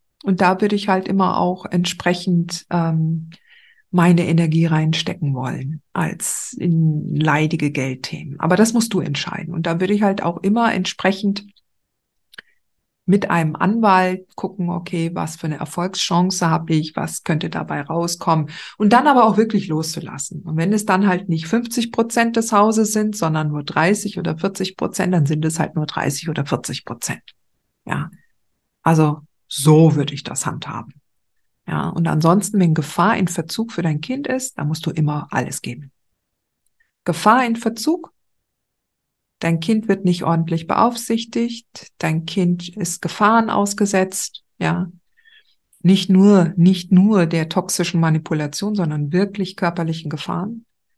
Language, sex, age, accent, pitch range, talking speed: German, female, 50-69, German, 160-205 Hz, 150 wpm